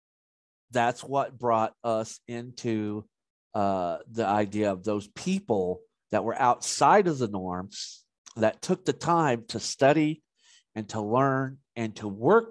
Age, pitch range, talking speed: 50-69, 110-150 Hz, 140 wpm